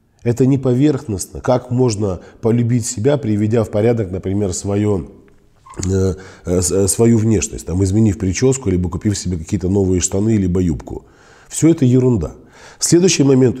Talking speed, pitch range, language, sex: 140 wpm, 95-120 Hz, Russian, male